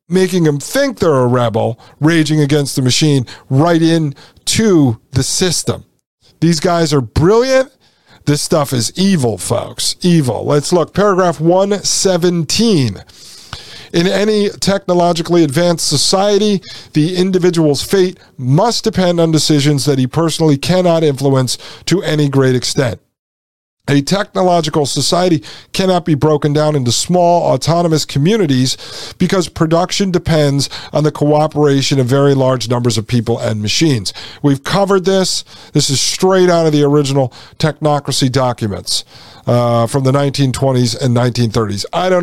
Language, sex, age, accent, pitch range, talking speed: English, male, 40-59, American, 130-175 Hz, 135 wpm